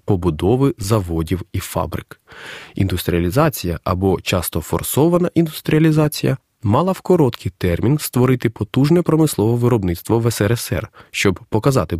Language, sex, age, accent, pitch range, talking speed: Ukrainian, male, 30-49, native, 90-135 Hz, 105 wpm